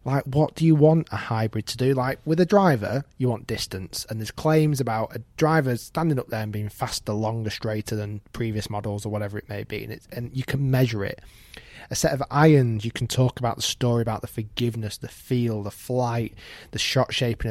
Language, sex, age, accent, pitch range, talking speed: English, male, 20-39, British, 110-135 Hz, 215 wpm